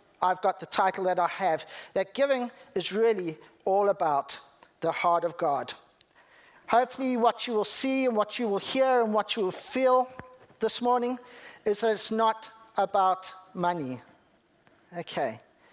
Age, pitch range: 50-69, 180-220 Hz